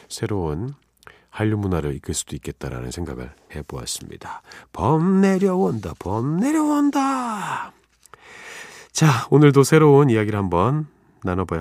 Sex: male